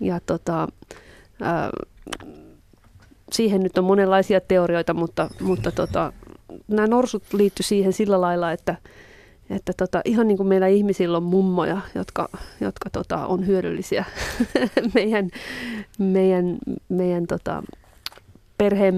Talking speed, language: 115 wpm, Finnish